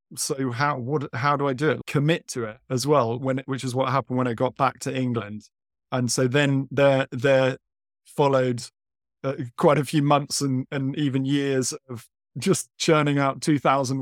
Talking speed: 195 wpm